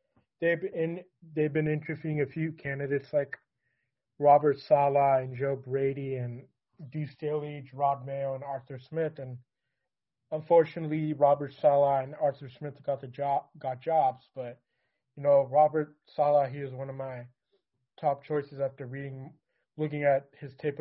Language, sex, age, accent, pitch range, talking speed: English, male, 20-39, American, 130-150 Hz, 150 wpm